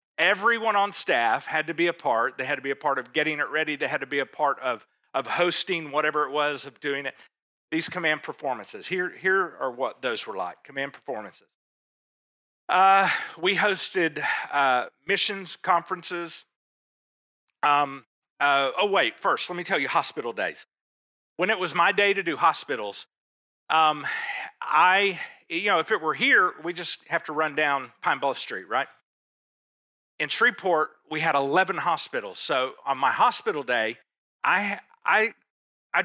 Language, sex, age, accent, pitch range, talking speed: English, male, 50-69, American, 150-195 Hz, 170 wpm